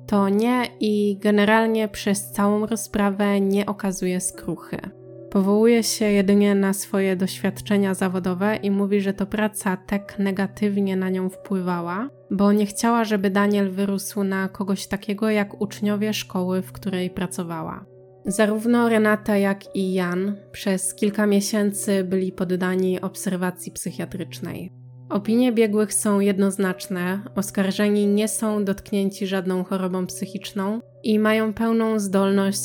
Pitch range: 185-210 Hz